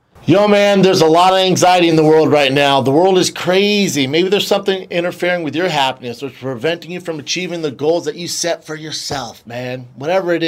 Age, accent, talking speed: 40-59, American, 220 wpm